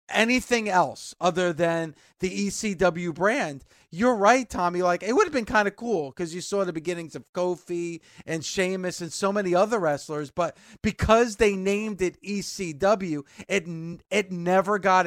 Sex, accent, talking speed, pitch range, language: male, American, 165 wpm, 165-200 Hz, English